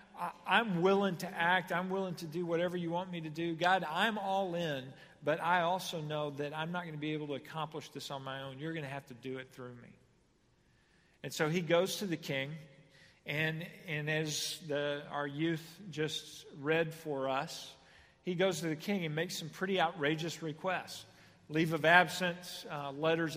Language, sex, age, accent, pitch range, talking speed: English, male, 40-59, American, 145-175 Hz, 200 wpm